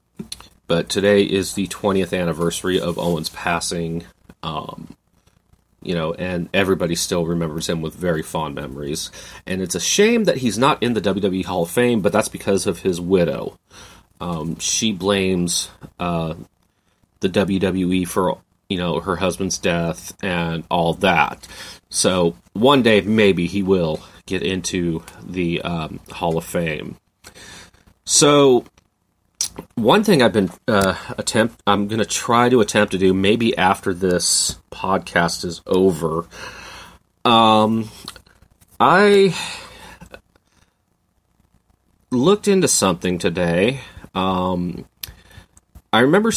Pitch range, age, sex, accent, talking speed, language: 85-105 Hz, 30-49, male, American, 125 wpm, English